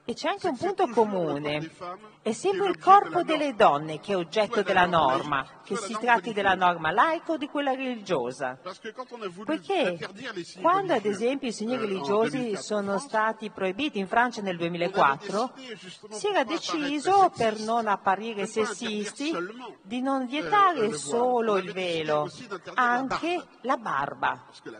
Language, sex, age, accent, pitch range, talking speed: Italian, female, 40-59, native, 190-255 Hz, 140 wpm